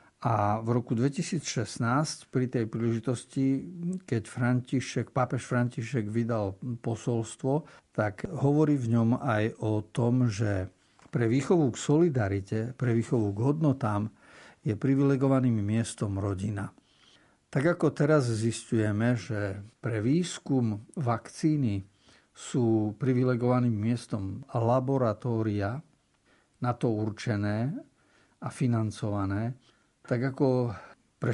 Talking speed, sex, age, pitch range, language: 100 wpm, male, 60-79, 110-130 Hz, Slovak